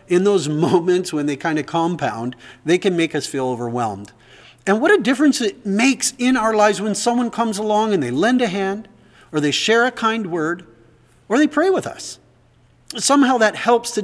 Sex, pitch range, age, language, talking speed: male, 135-215 Hz, 50-69, English, 200 wpm